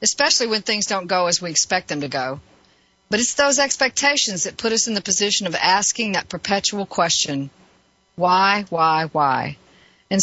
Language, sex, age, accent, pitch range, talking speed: English, female, 50-69, American, 190-235 Hz, 175 wpm